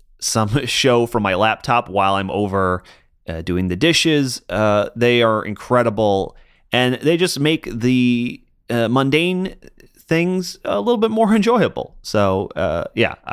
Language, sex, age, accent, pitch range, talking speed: English, male, 30-49, American, 95-125 Hz, 145 wpm